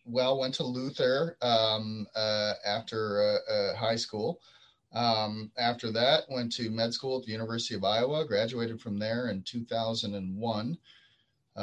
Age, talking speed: 30-49, 145 wpm